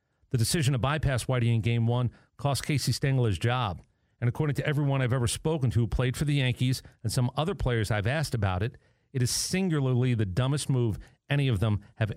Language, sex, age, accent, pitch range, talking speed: English, male, 40-59, American, 115-135 Hz, 210 wpm